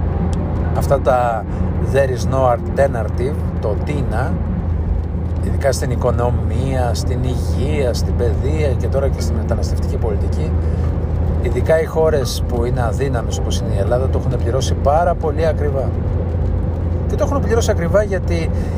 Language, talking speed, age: Greek, 135 wpm, 50-69